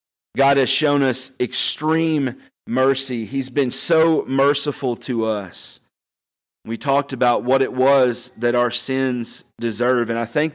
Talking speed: 140 wpm